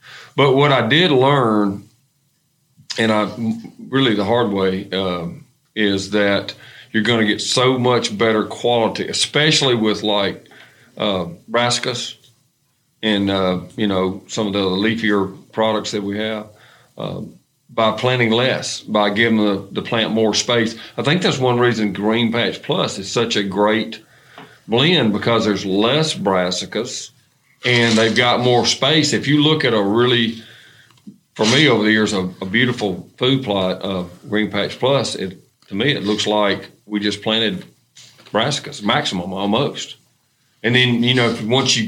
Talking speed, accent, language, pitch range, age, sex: 160 wpm, American, English, 105-120 Hz, 50-69, male